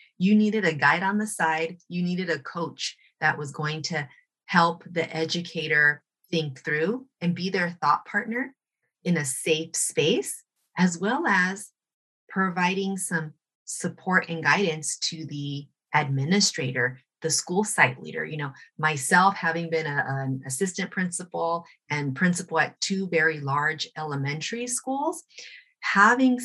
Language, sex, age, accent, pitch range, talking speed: English, female, 30-49, American, 145-195 Hz, 140 wpm